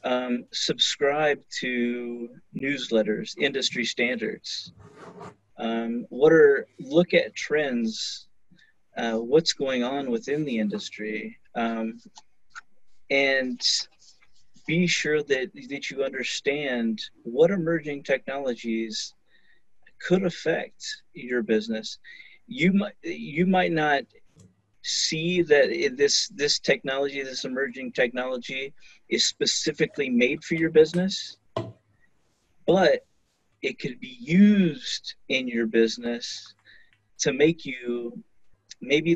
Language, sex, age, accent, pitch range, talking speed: English, male, 40-59, American, 120-195 Hz, 100 wpm